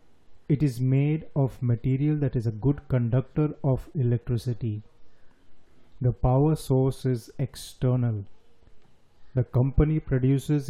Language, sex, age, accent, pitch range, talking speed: Hindi, male, 30-49, native, 120-140 Hz, 110 wpm